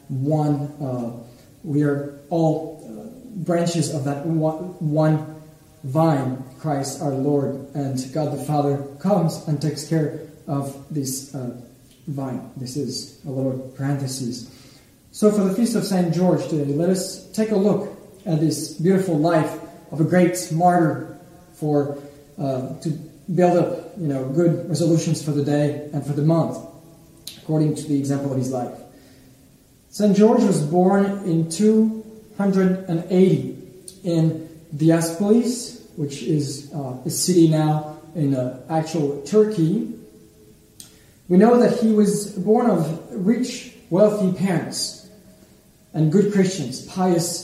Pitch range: 145-180 Hz